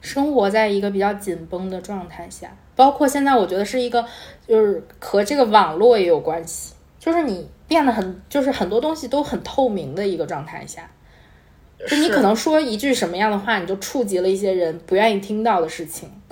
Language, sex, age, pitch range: Chinese, female, 20-39, 175-230 Hz